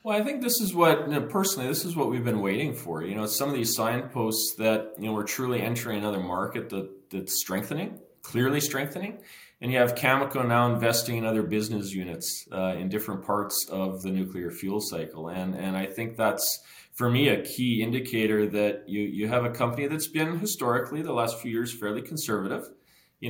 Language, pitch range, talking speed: English, 100-130 Hz, 205 wpm